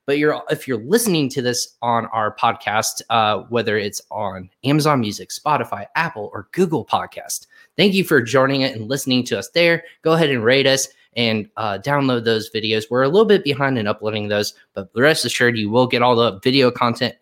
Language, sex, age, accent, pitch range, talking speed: English, male, 20-39, American, 115-150 Hz, 200 wpm